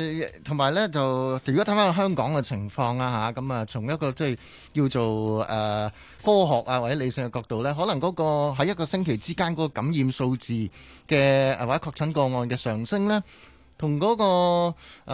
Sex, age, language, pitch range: male, 20-39, Chinese, 110-155 Hz